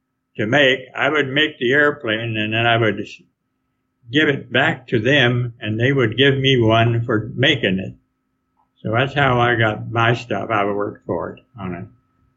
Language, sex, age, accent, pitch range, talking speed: English, male, 60-79, American, 105-130 Hz, 190 wpm